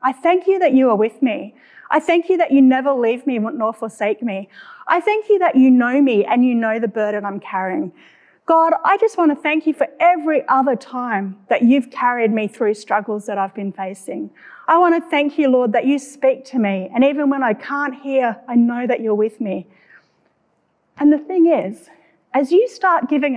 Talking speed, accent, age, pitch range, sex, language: 220 wpm, Australian, 40-59, 205-290 Hz, female, English